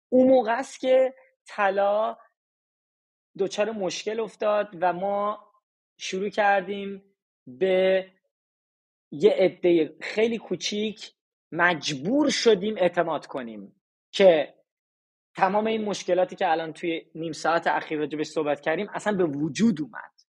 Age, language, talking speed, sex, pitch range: 30-49, Persian, 110 wpm, male, 175-225 Hz